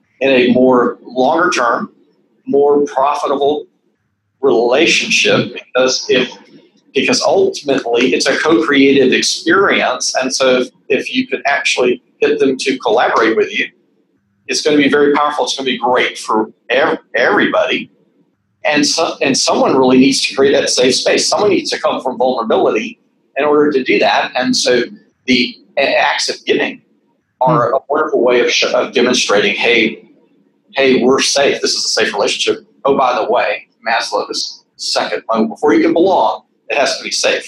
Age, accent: 40-59, American